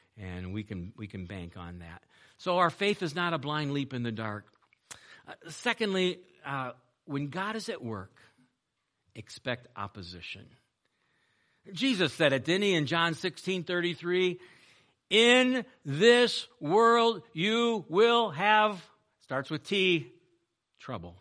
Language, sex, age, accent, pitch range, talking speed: English, male, 60-79, American, 115-180 Hz, 135 wpm